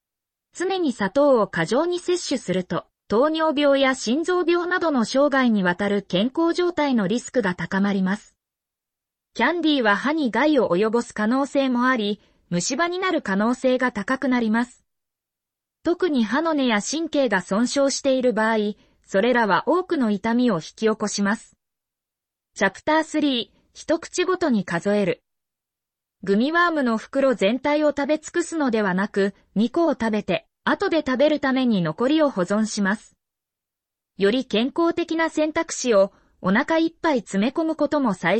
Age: 20-39